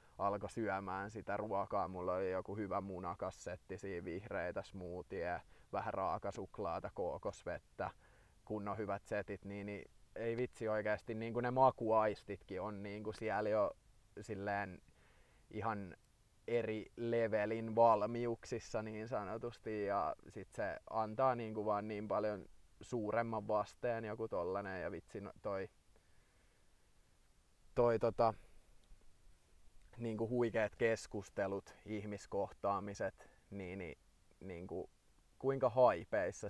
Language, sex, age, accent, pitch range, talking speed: Finnish, male, 20-39, native, 95-110 Hz, 110 wpm